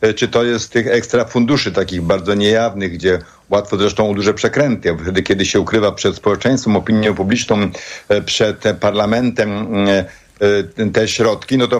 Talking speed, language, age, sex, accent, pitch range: 140 wpm, Polish, 50-69, male, native, 105-130 Hz